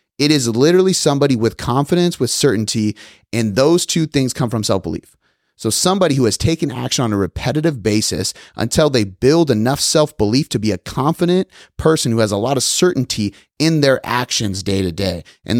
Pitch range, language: 110-155 Hz, English